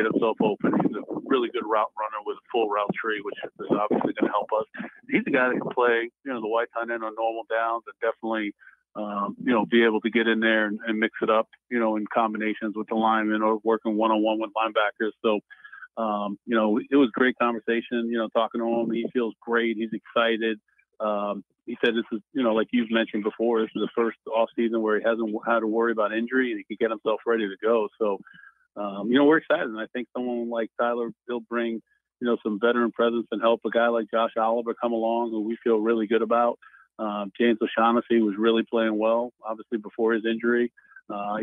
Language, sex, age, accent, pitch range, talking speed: English, male, 40-59, American, 110-120 Hz, 235 wpm